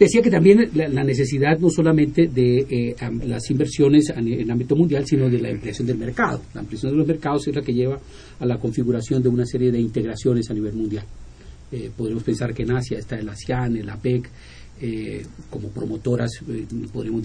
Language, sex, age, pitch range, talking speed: Spanish, male, 40-59, 110-140 Hz, 200 wpm